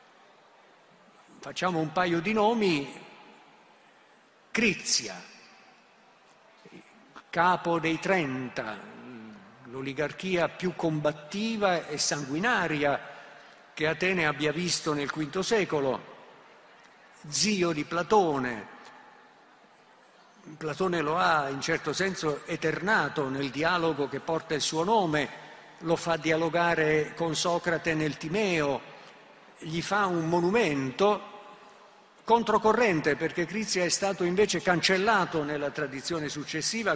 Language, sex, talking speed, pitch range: Italian, male, 95 wpm, 150-205 Hz